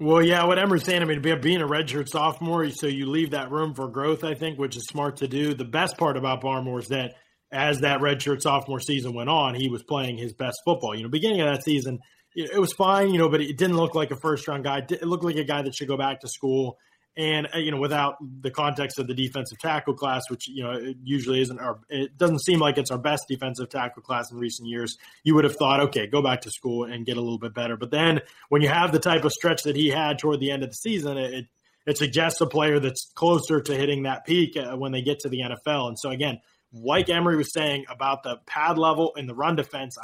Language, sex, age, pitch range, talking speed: English, male, 20-39, 135-160 Hz, 255 wpm